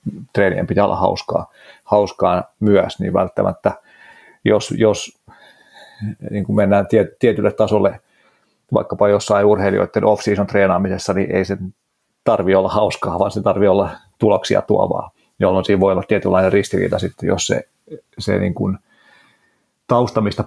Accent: native